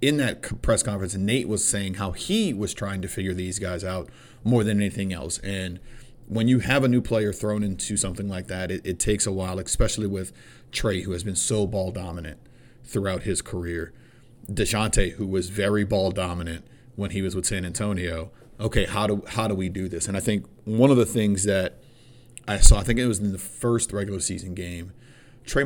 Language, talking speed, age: English, 210 wpm, 40-59